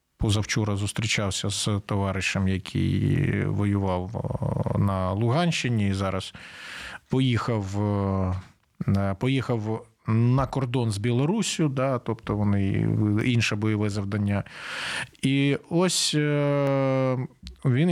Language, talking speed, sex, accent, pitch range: Ukrainian, 85 wpm, male, native, 110-140 Hz